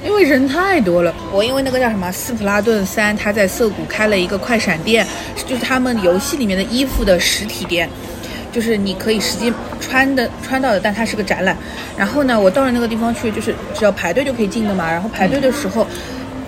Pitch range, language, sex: 195-245 Hz, Chinese, female